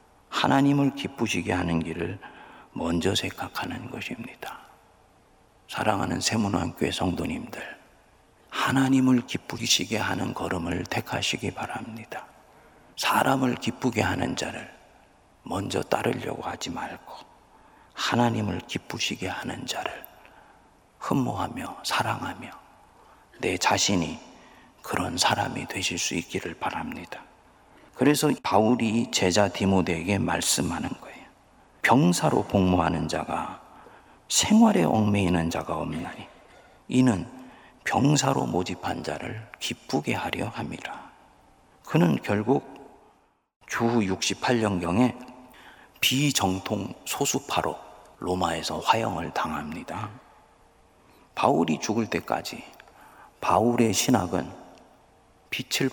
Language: Korean